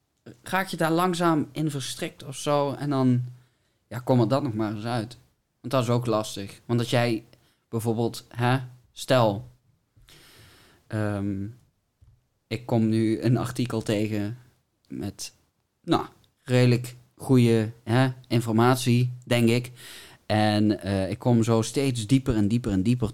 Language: Dutch